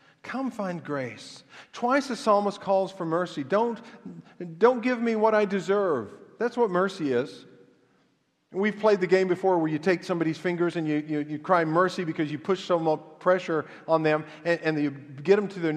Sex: male